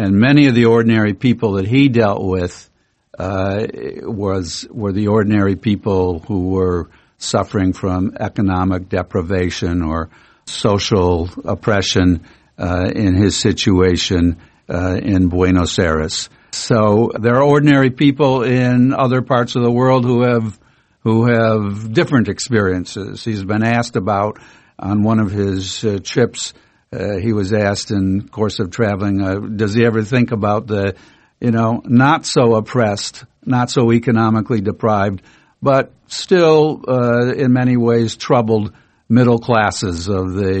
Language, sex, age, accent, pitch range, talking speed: English, male, 60-79, American, 95-125 Hz, 140 wpm